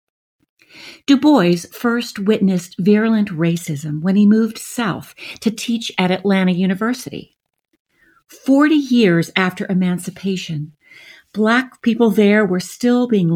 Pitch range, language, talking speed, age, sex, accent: 180-230 Hz, English, 110 wpm, 50-69, female, American